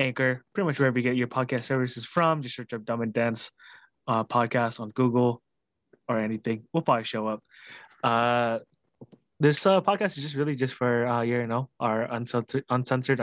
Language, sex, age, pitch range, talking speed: English, male, 20-39, 115-135 Hz, 185 wpm